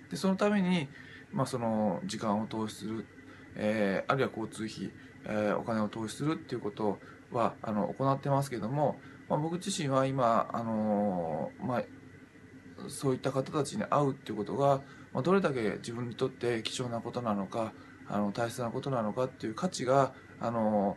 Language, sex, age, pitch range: Japanese, male, 20-39, 110-140 Hz